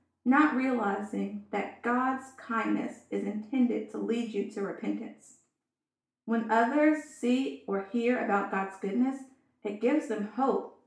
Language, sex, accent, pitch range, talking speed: English, female, American, 220-275 Hz, 135 wpm